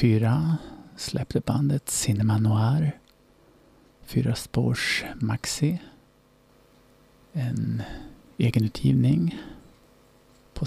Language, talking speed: English, 60 wpm